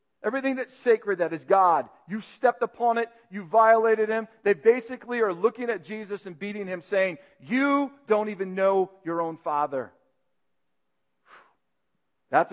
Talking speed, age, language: 150 wpm, 50-69, English